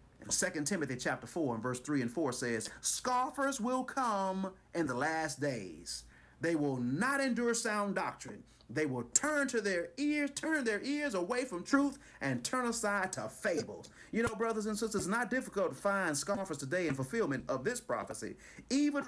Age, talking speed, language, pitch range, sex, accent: 40-59, 180 wpm, English, 150-240 Hz, male, American